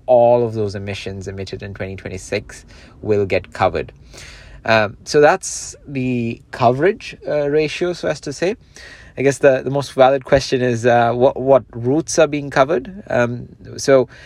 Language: English